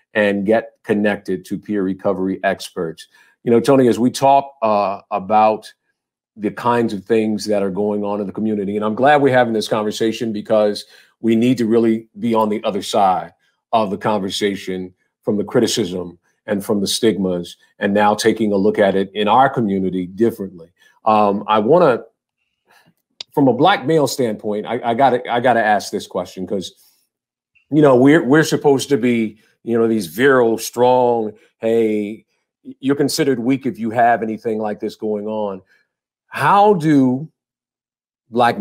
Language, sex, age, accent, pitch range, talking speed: English, male, 50-69, American, 105-135 Hz, 170 wpm